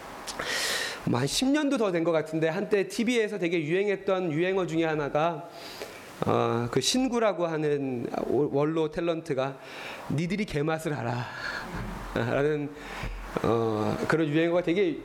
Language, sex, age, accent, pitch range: Korean, male, 30-49, native, 150-215 Hz